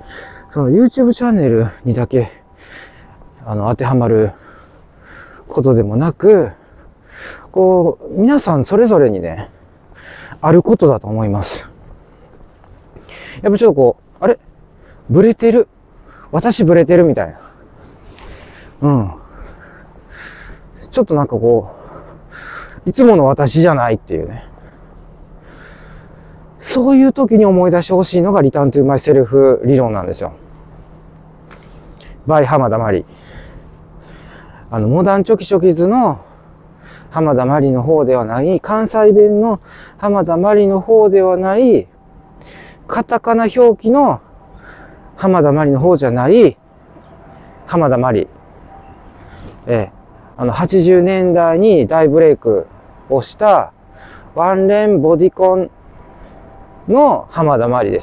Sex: male